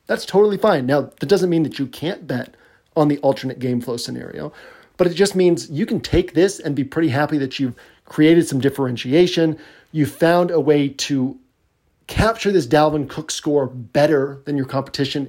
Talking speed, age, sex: 190 wpm, 40-59, male